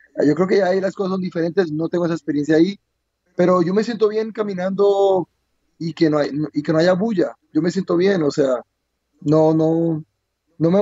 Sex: male